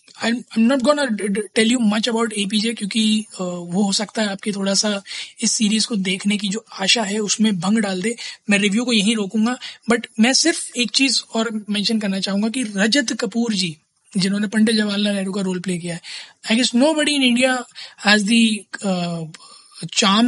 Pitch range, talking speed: 195-230 Hz, 200 wpm